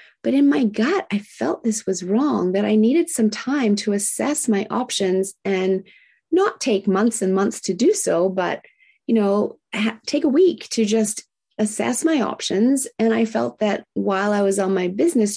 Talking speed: 190 wpm